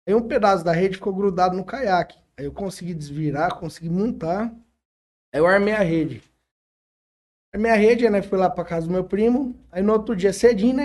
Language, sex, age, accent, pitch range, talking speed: Portuguese, male, 20-39, Brazilian, 165-225 Hz, 200 wpm